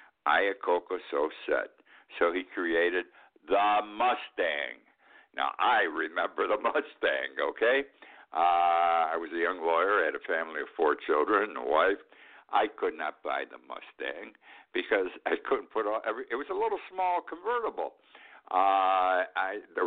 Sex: male